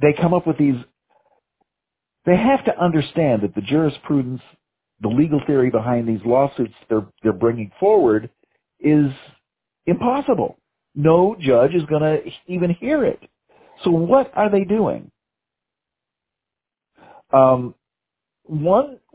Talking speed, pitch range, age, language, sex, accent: 120 wpm, 115-155 Hz, 50-69, English, male, American